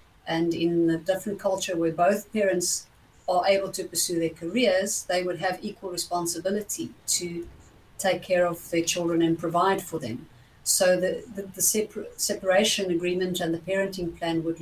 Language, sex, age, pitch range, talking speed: English, female, 50-69, 170-200 Hz, 165 wpm